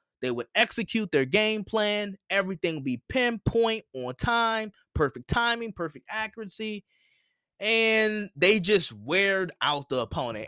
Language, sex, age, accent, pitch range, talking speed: English, male, 20-39, American, 145-220 Hz, 130 wpm